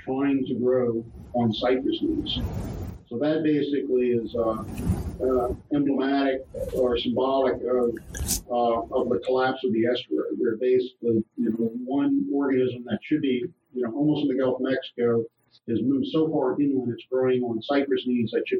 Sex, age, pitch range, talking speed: male, 50-69, 115-140 Hz, 165 wpm